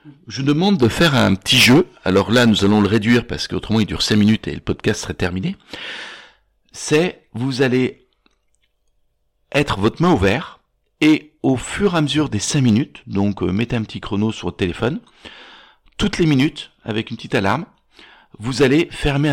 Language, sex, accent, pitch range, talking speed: French, male, French, 95-135 Hz, 185 wpm